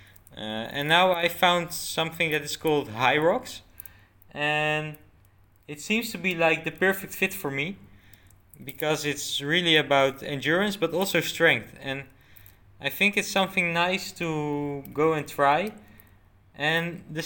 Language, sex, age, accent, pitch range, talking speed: English, male, 20-39, Dutch, 105-165 Hz, 145 wpm